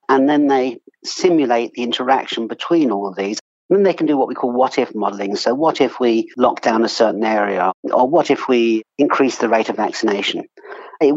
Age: 50-69